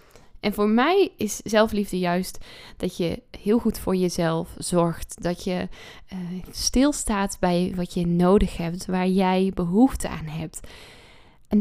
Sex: female